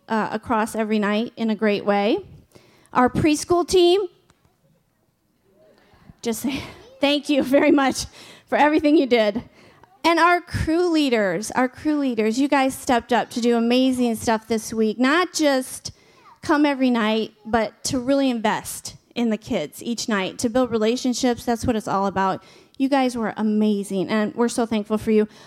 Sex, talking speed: female, 165 wpm